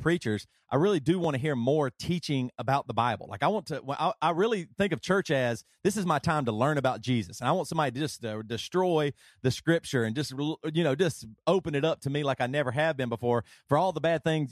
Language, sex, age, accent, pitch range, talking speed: English, male, 30-49, American, 130-175 Hz, 255 wpm